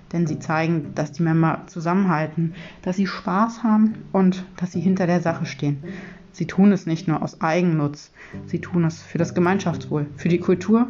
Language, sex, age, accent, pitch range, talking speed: German, female, 30-49, German, 150-185 Hz, 185 wpm